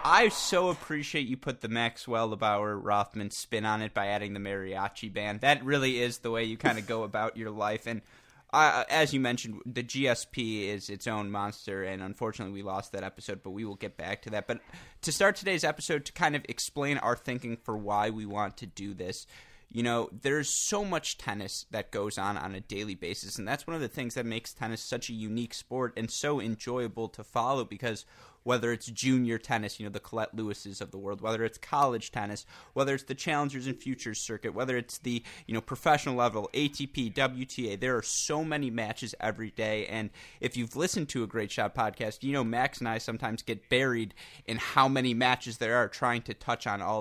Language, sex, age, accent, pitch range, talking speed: English, male, 20-39, American, 105-125 Hz, 220 wpm